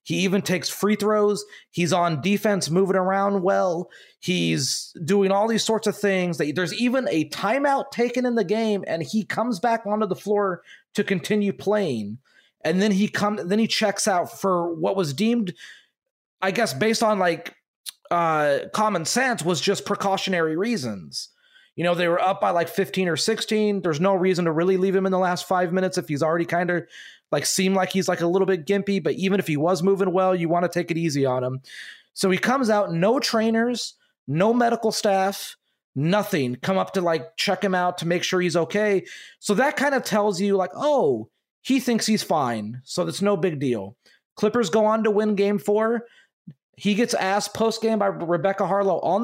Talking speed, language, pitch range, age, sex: 205 wpm, English, 175-215 Hz, 30-49, male